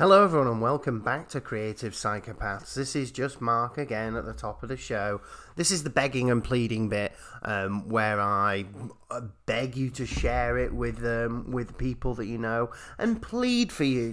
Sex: male